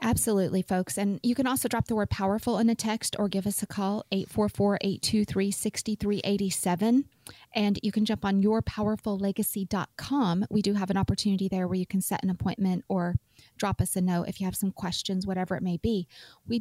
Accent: American